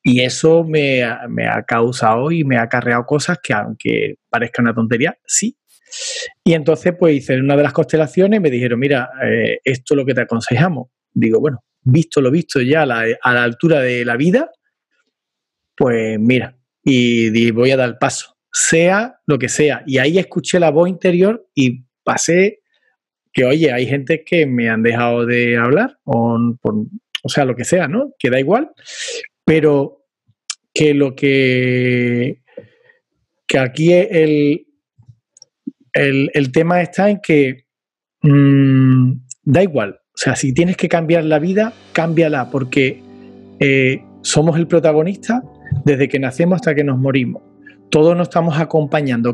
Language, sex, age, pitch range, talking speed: Spanish, male, 40-59, 125-170 Hz, 160 wpm